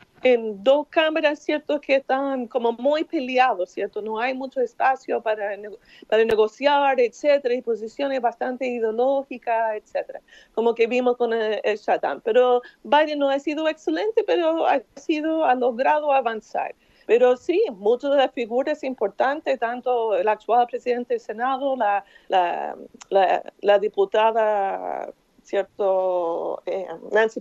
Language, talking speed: Spanish, 140 wpm